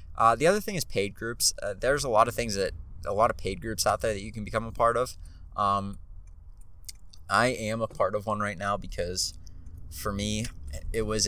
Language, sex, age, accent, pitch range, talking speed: English, male, 20-39, American, 90-105 Hz, 225 wpm